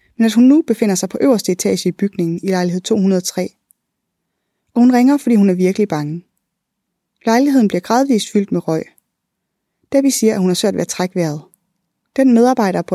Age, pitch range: 20-39, 180-225 Hz